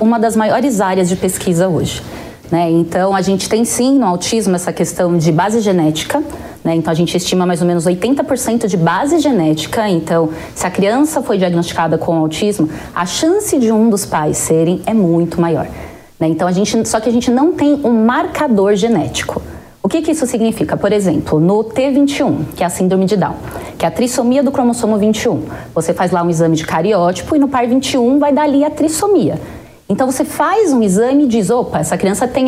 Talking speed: 200 wpm